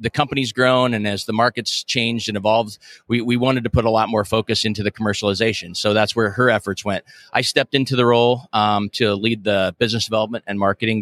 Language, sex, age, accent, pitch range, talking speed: English, male, 30-49, American, 105-125 Hz, 225 wpm